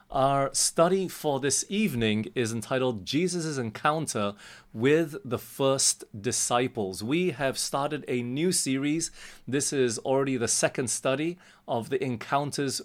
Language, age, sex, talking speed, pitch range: English, 30-49, male, 130 wpm, 115-150 Hz